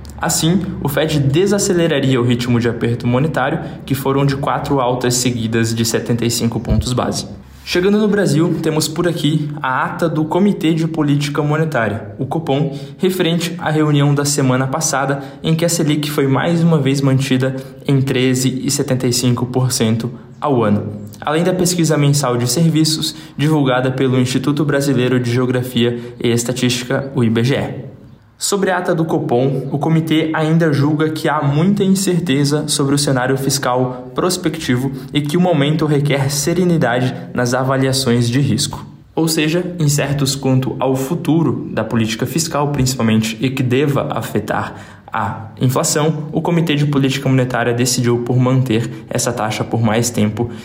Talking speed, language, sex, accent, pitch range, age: 150 wpm, Portuguese, male, Brazilian, 125-155 Hz, 20-39